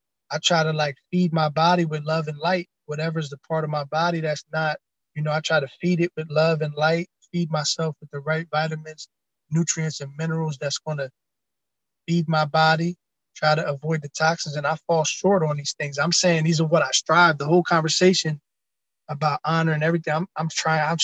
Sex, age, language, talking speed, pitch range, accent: male, 20-39, English, 215 wpm, 150-170 Hz, American